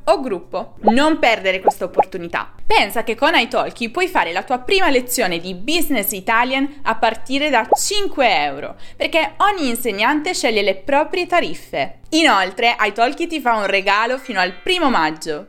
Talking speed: 160 wpm